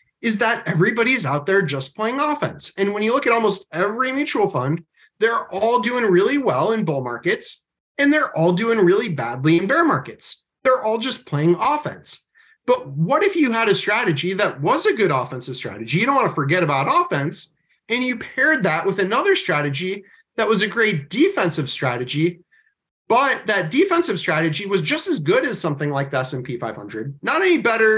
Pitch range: 170-250 Hz